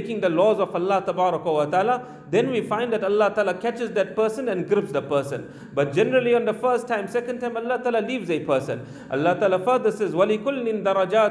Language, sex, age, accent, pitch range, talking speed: English, male, 40-59, Indian, 185-235 Hz, 190 wpm